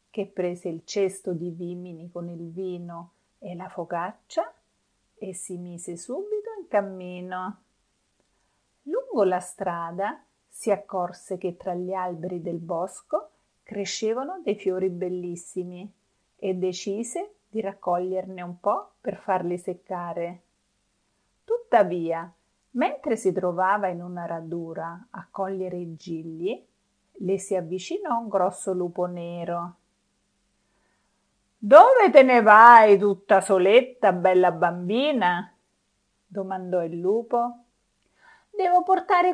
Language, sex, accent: Italian, female, native